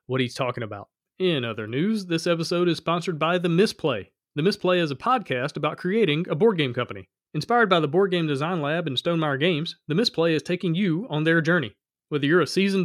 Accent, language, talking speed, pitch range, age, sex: American, English, 220 wpm, 135-180 Hz, 40-59, male